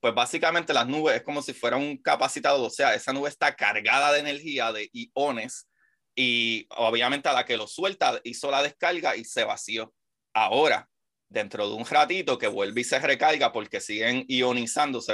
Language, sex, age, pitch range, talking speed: Spanish, male, 30-49, 120-150 Hz, 180 wpm